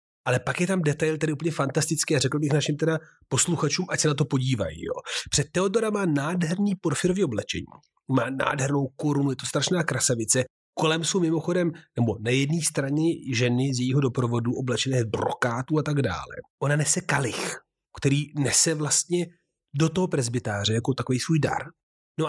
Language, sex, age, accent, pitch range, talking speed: Czech, male, 30-49, native, 120-155 Hz, 170 wpm